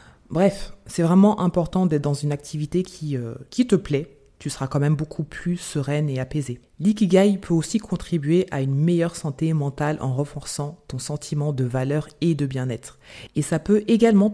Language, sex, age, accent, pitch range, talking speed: French, female, 20-39, French, 145-180 Hz, 180 wpm